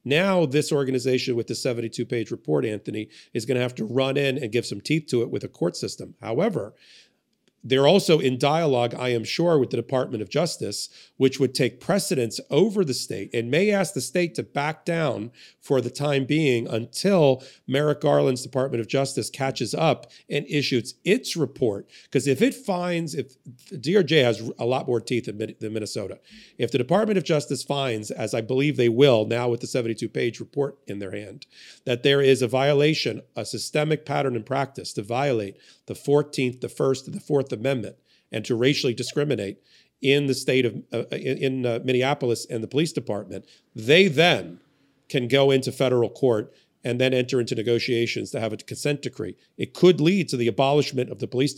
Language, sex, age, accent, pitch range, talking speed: English, male, 40-59, American, 120-150 Hz, 190 wpm